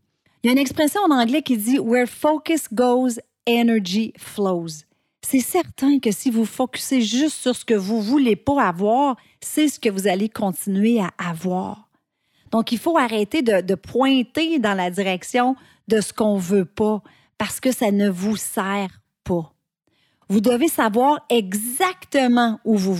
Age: 40-59